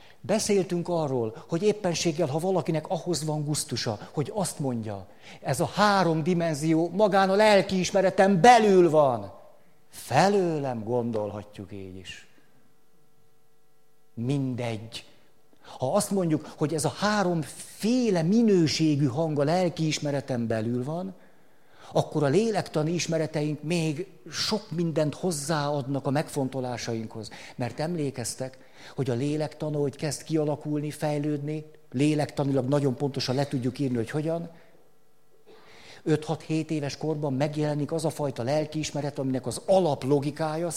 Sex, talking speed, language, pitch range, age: male, 115 wpm, Hungarian, 135-170 Hz, 50-69